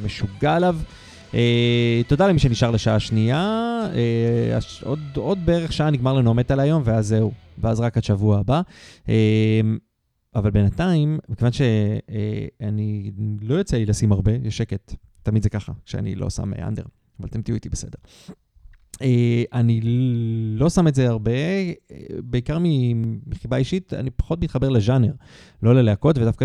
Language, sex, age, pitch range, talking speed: Hebrew, male, 30-49, 105-130 Hz, 145 wpm